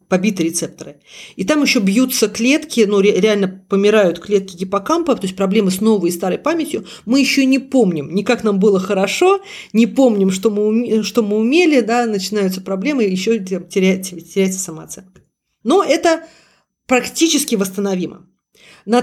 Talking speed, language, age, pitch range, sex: 150 wpm, Russian, 40-59, 195-270 Hz, female